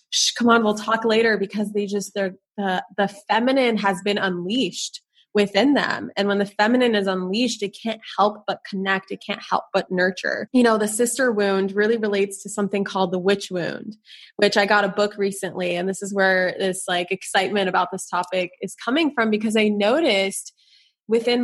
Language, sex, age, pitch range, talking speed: English, female, 20-39, 190-220 Hz, 190 wpm